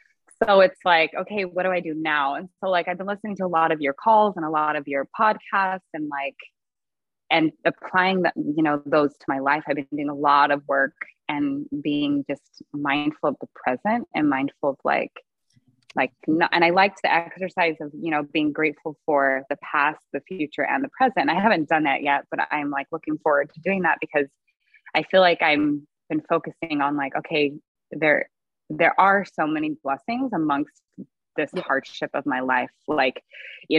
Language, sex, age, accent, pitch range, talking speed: English, female, 20-39, American, 150-190 Hz, 200 wpm